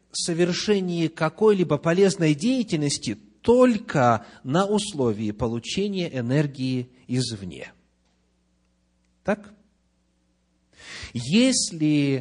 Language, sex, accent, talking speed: Russian, male, native, 60 wpm